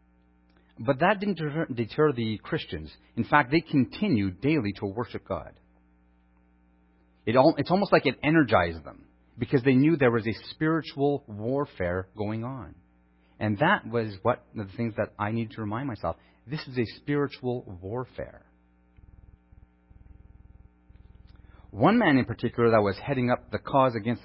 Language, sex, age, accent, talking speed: English, male, 40-59, American, 150 wpm